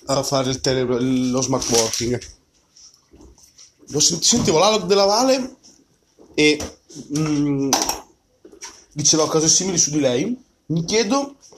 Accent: native